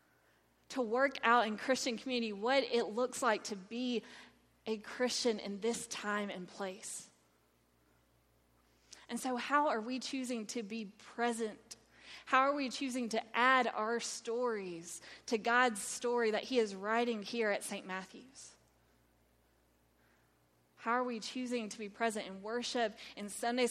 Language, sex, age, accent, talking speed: English, female, 20-39, American, 145 wpm